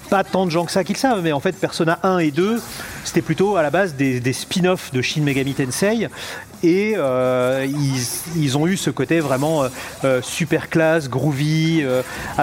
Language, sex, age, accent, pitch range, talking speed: French, male, 40-59, French, 135-170 Hz, 205 wpm